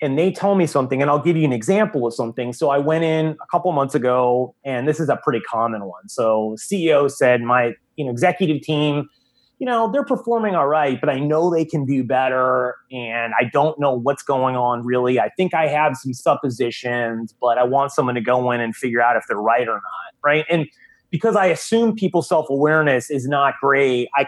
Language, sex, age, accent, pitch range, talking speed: English, male, 30-49, American, 125-165 Hz, 220 wpm